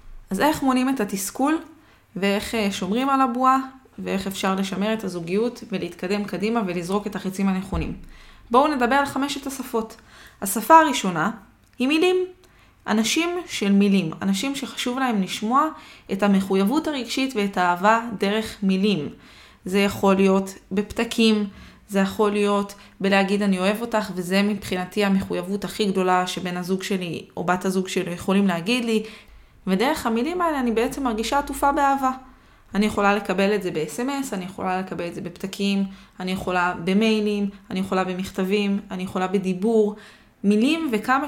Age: 20-39